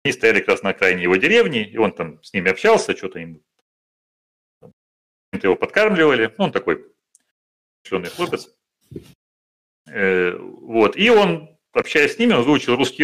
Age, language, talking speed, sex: 40-59, Russian, 150 wpm, male